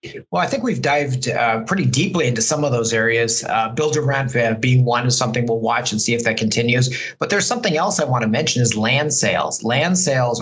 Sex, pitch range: male, 110-140 Hz